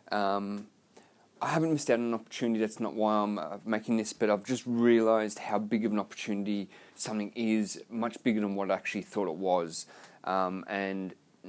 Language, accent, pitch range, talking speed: English, Australian, 105-130 Hz, 195 wpm